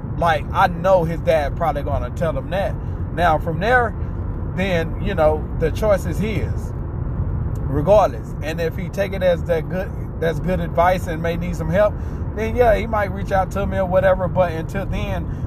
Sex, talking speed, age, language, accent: male, 200 wpm, 20-39, English, American